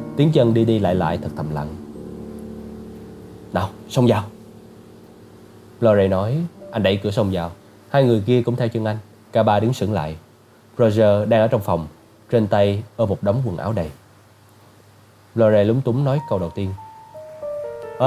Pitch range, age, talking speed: 100-125 Hz, 20-39, 175 wpm